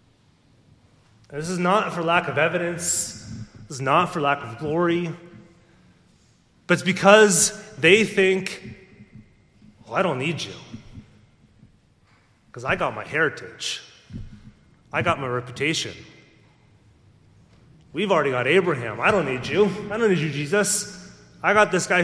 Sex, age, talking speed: male, 30-49, 135 wpm